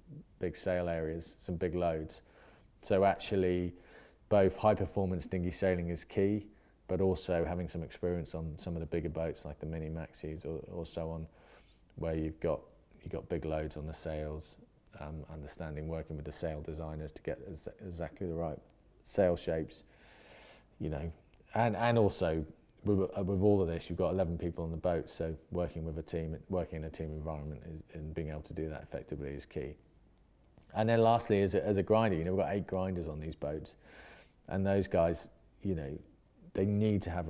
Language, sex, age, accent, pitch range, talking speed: English, male, 30-49, British, 80-90 Hz, 190 wpm